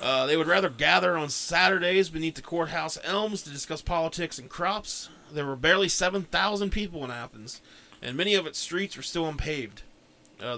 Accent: American